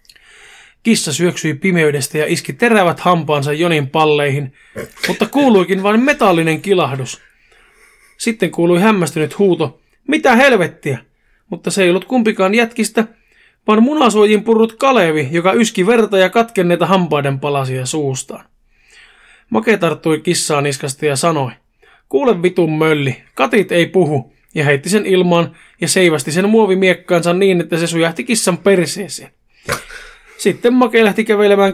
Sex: male